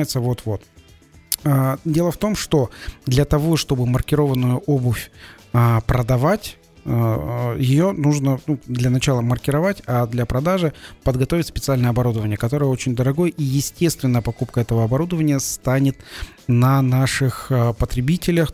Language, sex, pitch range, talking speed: Russian, male, 120-150 Hz, 125 wpm